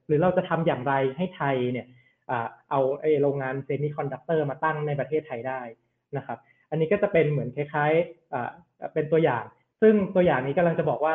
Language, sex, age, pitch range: Thai, male, 20-39, 140-175 Hz